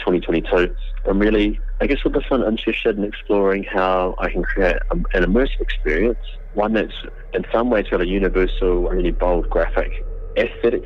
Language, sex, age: English, male, 30-49